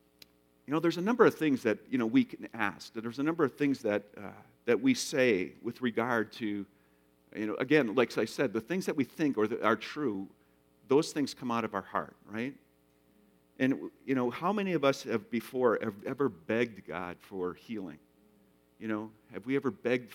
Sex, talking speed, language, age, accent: male, 210 wpm, English, 50-69, American